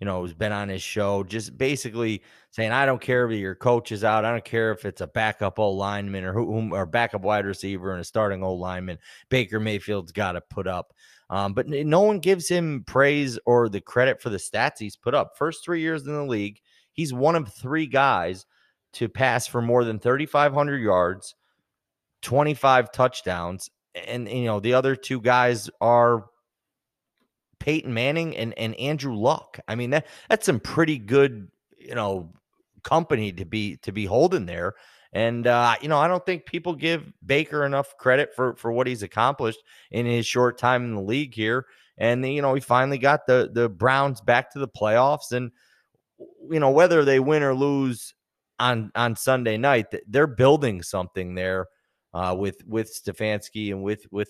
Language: English